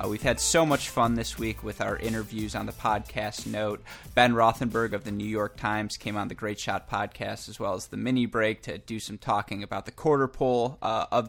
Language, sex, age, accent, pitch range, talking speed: English, male, 20-39, American, 105-125 Hz, 230 wpm